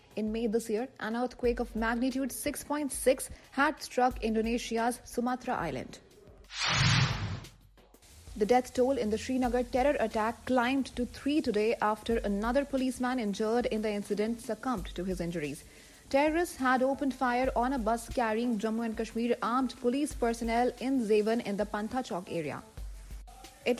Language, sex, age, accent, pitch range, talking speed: English, female, 40-59, Indian, 225-265 Hz, 145 wpm